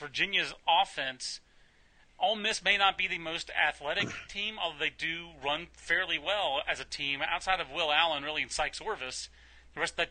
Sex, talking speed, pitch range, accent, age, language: male, 190 wpm, 155-195 Hz, American, 30-49, English